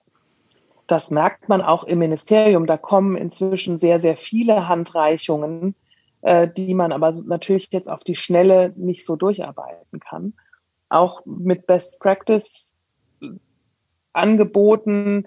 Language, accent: German, German